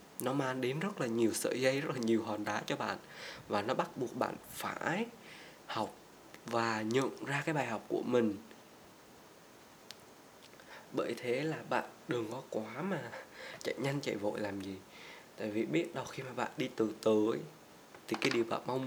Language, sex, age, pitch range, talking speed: Vietnamese, male, 20-39, 115-155 Hz, 190 wpm